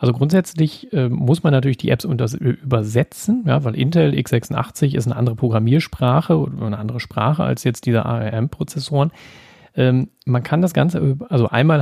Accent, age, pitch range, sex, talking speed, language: German, 30-49, 115-145 Hz, male, 150 wpm, German